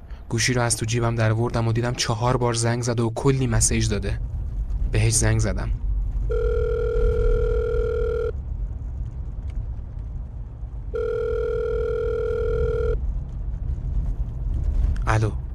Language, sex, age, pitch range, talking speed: Persian, male, 30-49, 100-125 Hz, 80 wpm